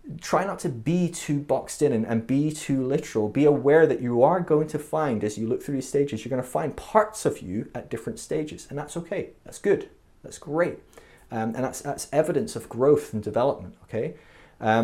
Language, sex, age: English, male, 30-49